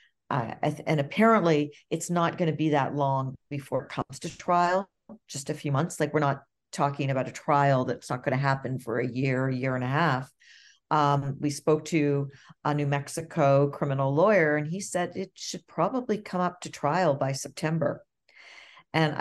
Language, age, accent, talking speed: English, 50-69, American, 190 wpm